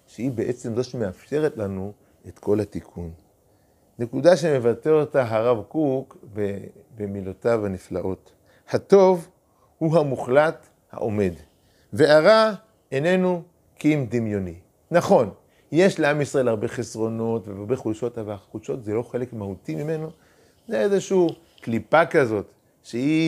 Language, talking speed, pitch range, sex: Hebrew, 115 wpm, 100-155 Hz, male